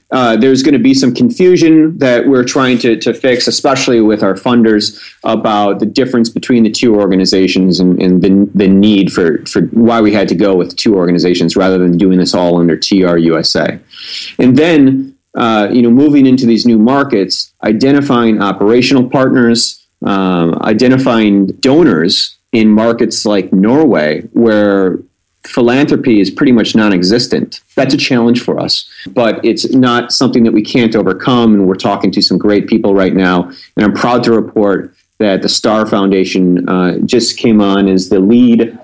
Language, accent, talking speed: English, American, 170 wpm